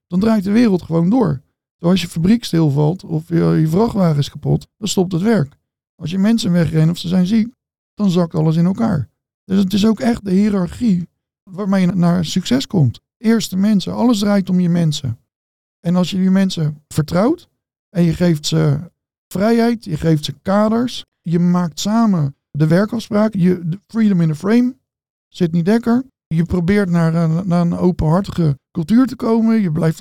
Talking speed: 180 wpm